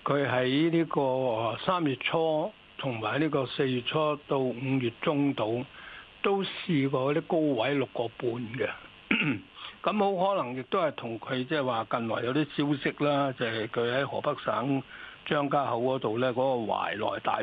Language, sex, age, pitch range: Chinese, male, 60-79, 130-170 Hz